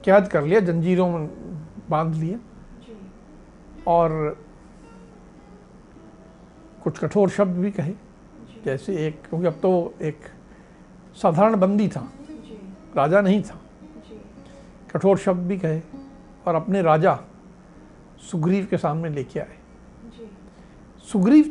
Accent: native